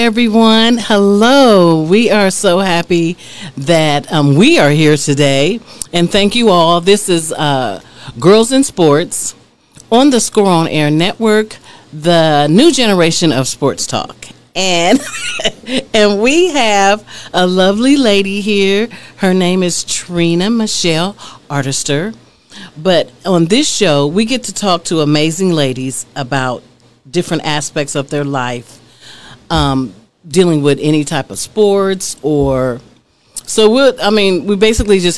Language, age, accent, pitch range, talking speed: English, 40-59, American, 145-205 Hz, 135 wpm